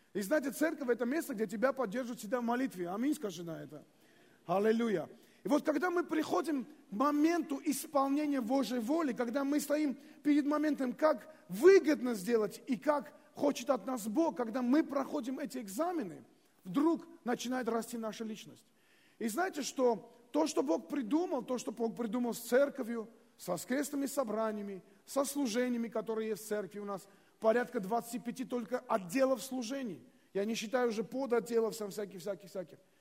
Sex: male